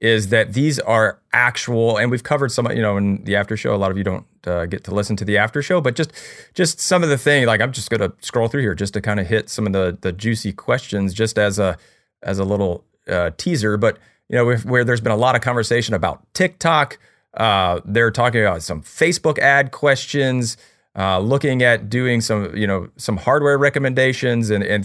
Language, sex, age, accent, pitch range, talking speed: English, male, 30-49, American, 100-125 Hz, 230 wpm